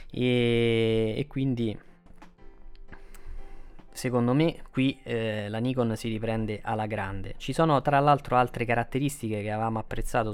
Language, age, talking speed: Italian, 20-39, 130 wpm